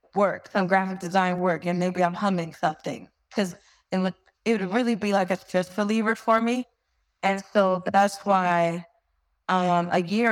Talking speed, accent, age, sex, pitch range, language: 175 wpm, American, 20-39, female, 175-195 Hz, English